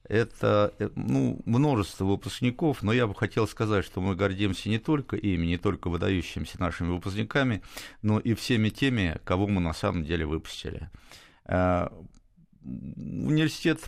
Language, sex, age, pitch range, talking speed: Russian, male, 50-69, 90-110 Hz, 135 wpm